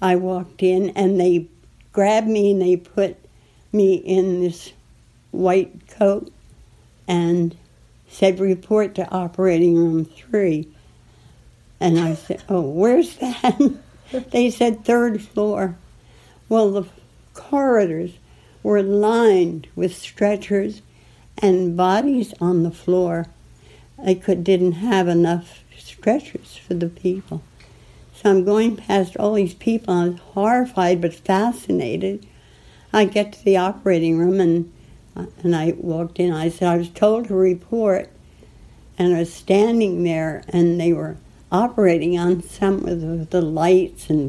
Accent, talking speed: American, 135 wpm